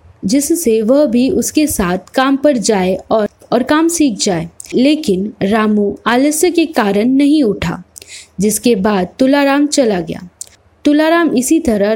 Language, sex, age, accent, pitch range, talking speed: Hindi, female, 20-39, native, 210-275 Hz, 140 wpm